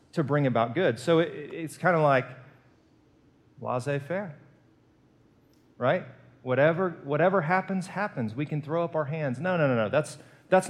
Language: English